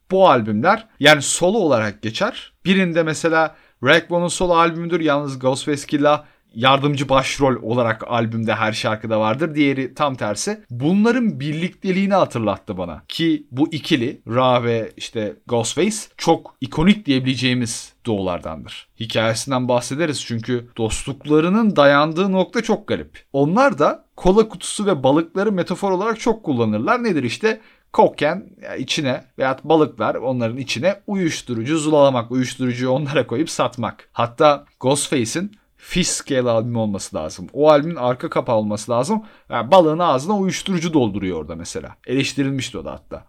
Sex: male